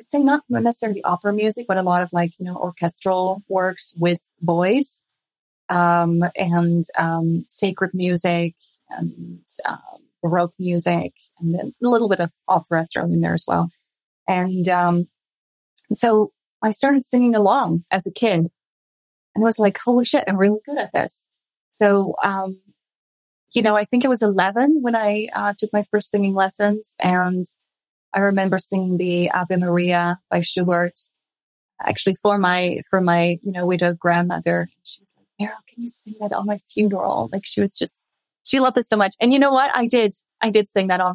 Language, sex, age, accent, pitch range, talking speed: English, female, 30-49, American, 175-210 Hz, 180 wpm